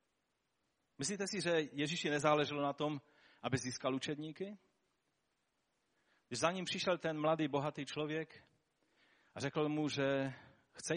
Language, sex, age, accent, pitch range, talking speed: Czech, male, 40-59, native, 105-150 Hz, 125 wpm